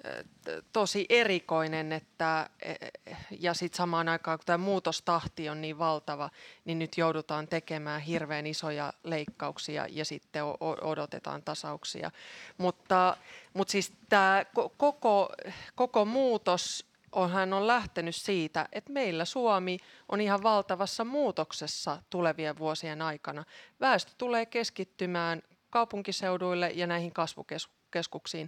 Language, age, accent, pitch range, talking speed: Finnish, 30-49, native, 165-200 Hz, 115 wpm